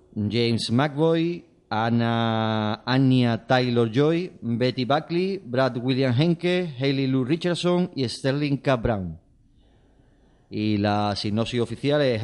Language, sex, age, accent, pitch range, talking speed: Spanish, male, 30-49, Spanish, 110-135 Hz, 115 wpm